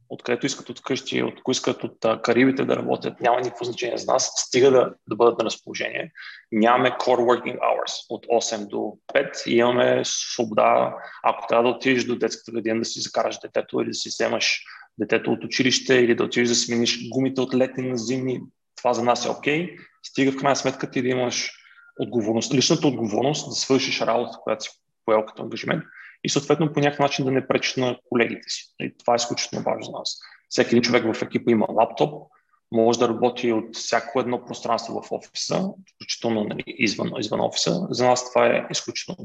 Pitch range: 110-125 Hz